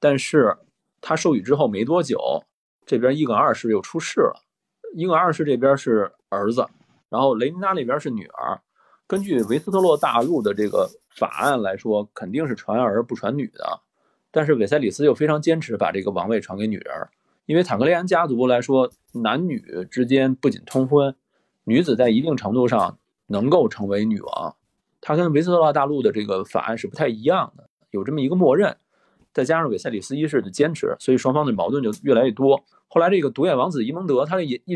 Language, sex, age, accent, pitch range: Chinese, male, 20-39, native, 110-150 Hz